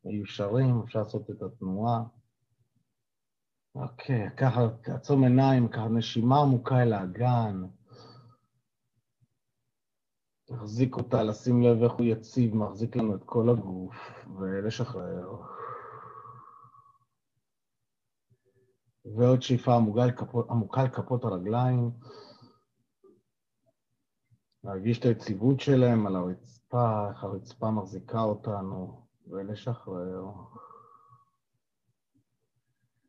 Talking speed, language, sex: 80 wpm, Hebrew, male